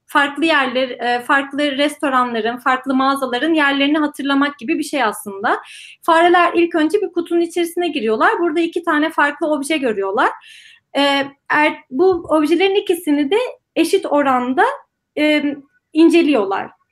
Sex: female